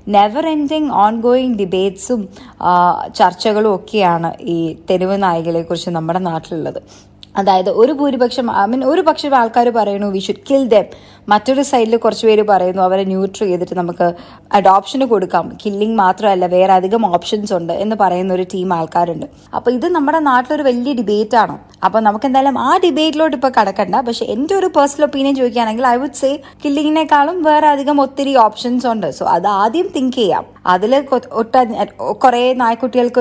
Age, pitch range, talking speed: 20-39, 190-275 Hz, 150 wpm